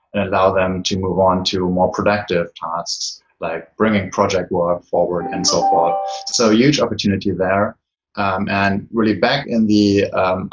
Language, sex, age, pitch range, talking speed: English, male, 20-39, 95-110 Hz, 165 wpm